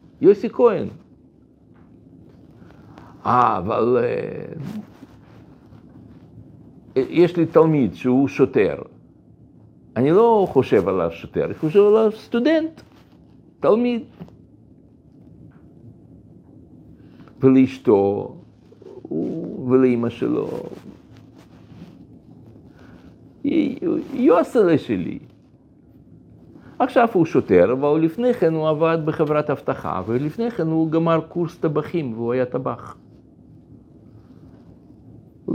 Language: Hebrew